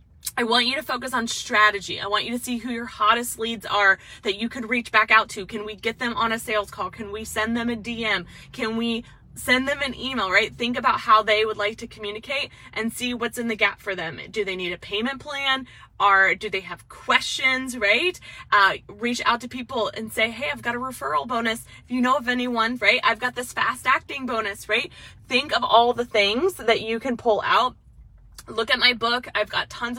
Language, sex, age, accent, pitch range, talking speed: English, female, 20-39, American, 210-255 Hz, 230 wpm